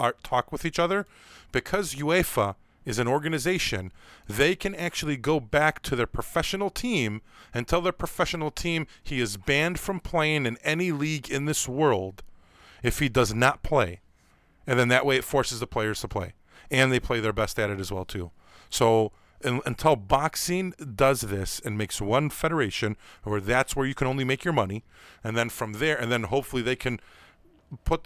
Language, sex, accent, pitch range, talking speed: English, male, American, 110-150 Hz, 185 wpm